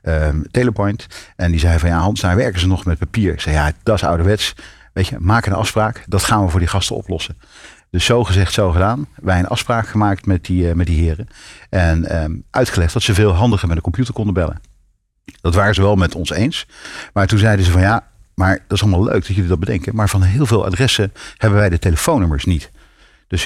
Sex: male